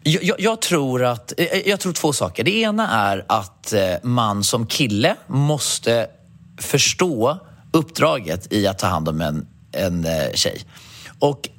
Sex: male